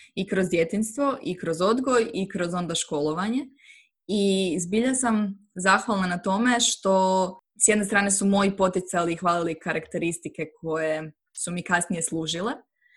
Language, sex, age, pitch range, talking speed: Croatian, female, 20-39, 170-215 Hz, 145 wpm